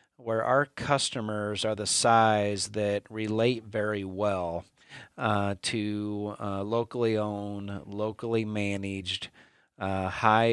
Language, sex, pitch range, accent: English, male, 105-120 Hz, American